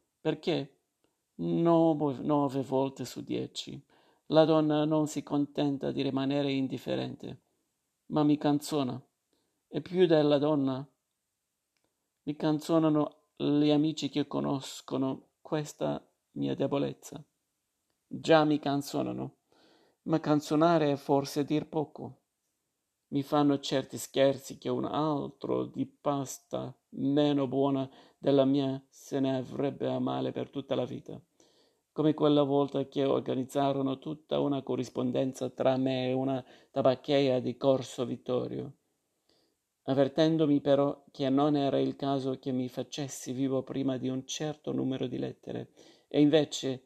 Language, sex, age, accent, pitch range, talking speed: Italian, male, 50-69, native, 130-145 Hz, 125 wpm